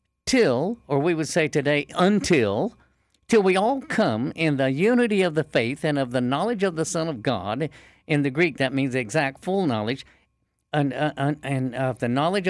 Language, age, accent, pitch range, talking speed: English, 60-79, American, 135-190 Hz, 195 wpm